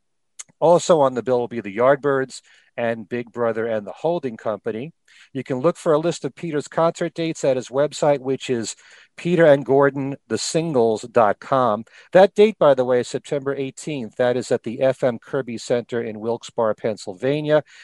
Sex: male